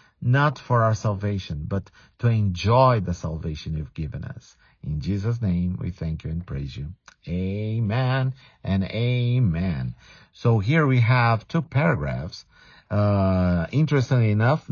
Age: 50-69